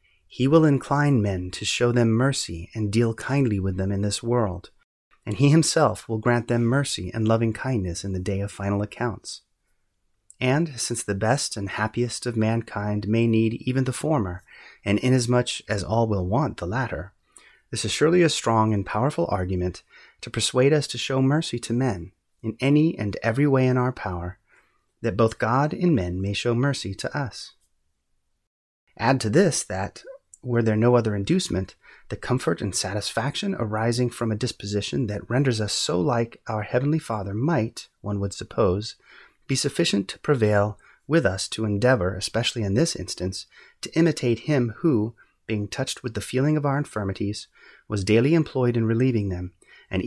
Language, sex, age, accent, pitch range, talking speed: English, male, 30-49, American, 100-130 Hz, 175 wpm